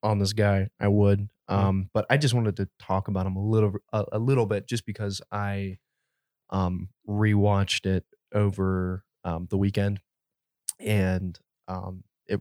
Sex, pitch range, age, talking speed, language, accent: male, 95-110 Hz, 20-39, 160 wpm, English, American